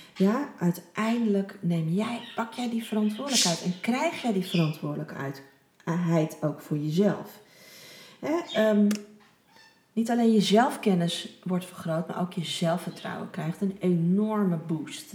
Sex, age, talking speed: female, 40-59, 125 wpm